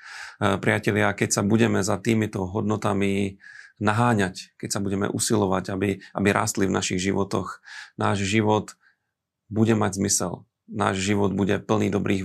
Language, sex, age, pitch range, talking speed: Slovak, male, 40-59, 100-110 Hz, 135 wpm